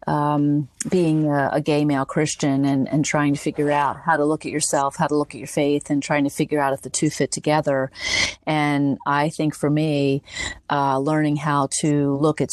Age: 40-59